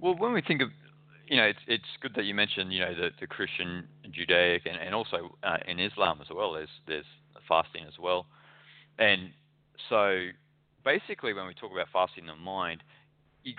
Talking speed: 200 wpm